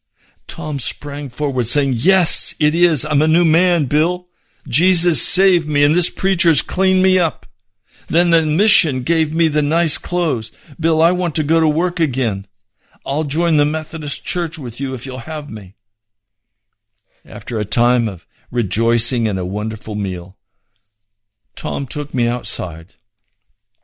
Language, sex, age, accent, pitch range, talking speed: English, male, 60-79, American, 110-165 Hz, 155 wpm